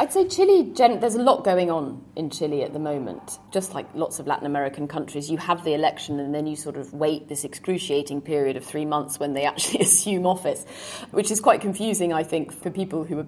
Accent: British